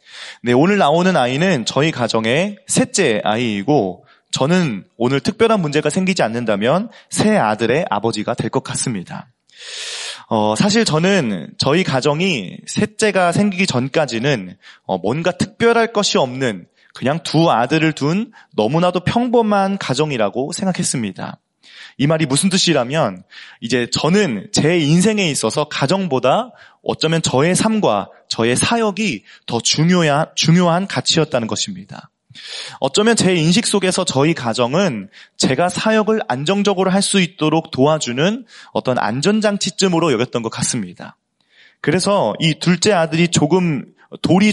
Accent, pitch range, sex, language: native, 135-195 Hz, male, Korean